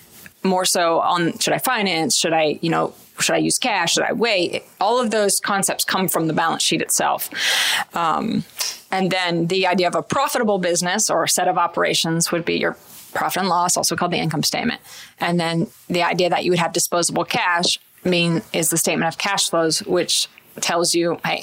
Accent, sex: American, female